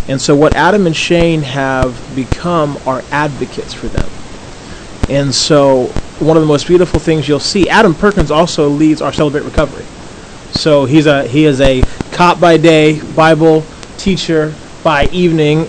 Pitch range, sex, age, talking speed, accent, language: 150-180 Hz, male, 30-49, 160 wpm, American, English